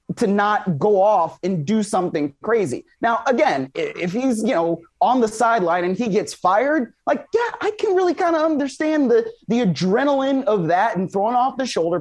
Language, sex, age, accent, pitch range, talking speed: English, male, 20-39, American, 165-225 Hz, 195 wpm